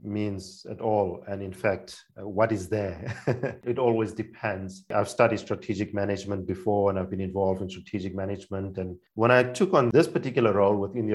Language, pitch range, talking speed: English, 100-120 Hz, 185 wpm